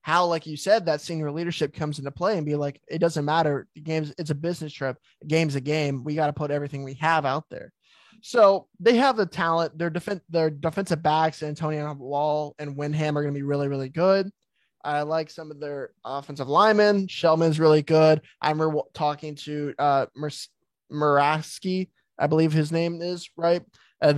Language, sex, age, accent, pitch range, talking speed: English, male, 20-39, American, 145-170 Hz, 195 wpm